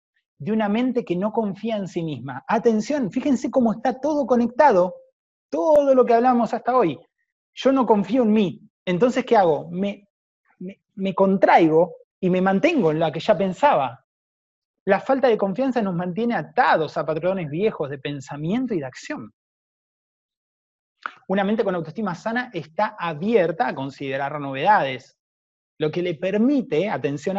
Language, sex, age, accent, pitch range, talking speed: Spanish, male, 30-49, Argentinian, 155-230 Hz, 155 wpm